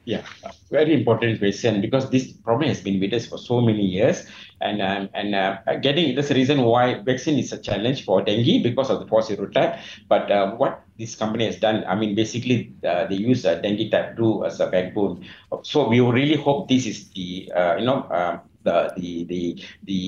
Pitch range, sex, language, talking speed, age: 100-120 Hz, male, English, 210 wpm, 60-79